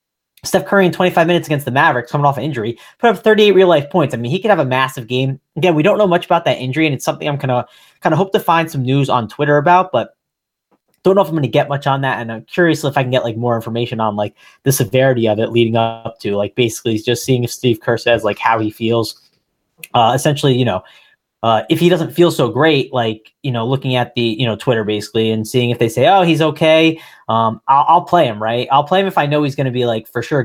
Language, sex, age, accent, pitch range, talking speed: English, male, 20-39, American, 120-170 Hz, 280 wpm